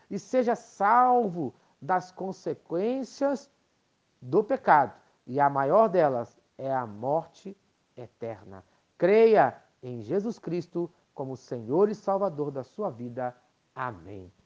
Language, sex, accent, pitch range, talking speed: Portuguese, male, Brazilian, 135-195 Hz, 110 wpm